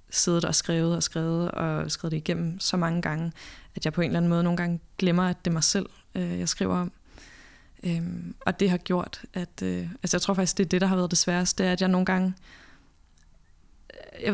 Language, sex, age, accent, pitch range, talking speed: Danish, female, 20-39, native, 165-195 Hz, 230 wpm